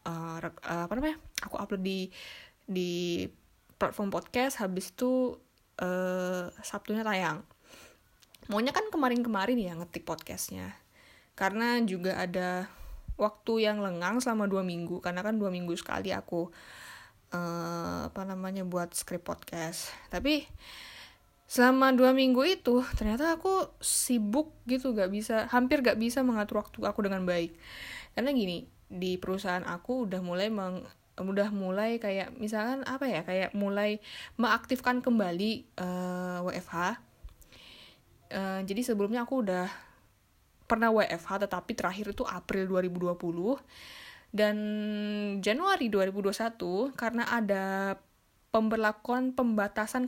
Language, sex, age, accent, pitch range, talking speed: Indonesian, female, 10-29, native, 180-235 Hz, 115 wpm